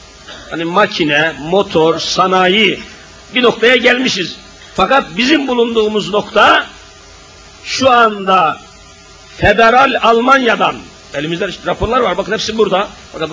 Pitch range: 140-235 Hz